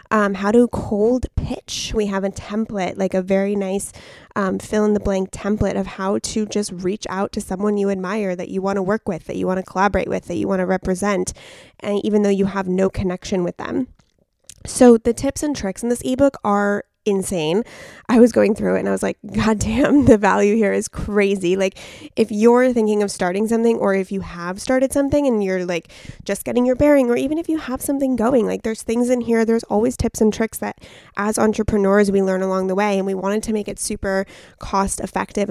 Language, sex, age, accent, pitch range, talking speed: English, female, 20-39, American, 195-230 Hz, 230 wpm